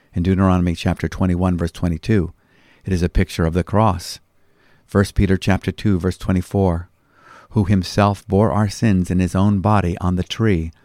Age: 50-69